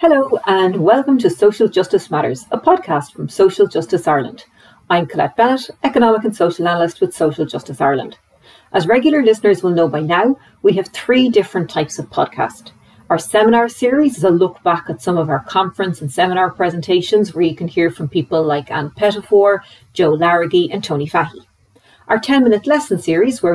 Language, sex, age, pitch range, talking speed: English, female, 40-59, 160-205 Hz, 185 wpm